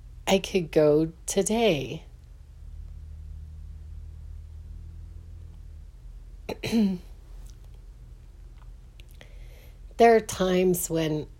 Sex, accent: female, American